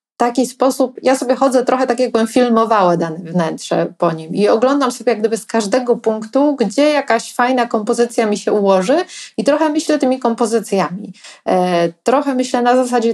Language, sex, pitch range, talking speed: Polish, female, 195-250 Hz, 170 wpm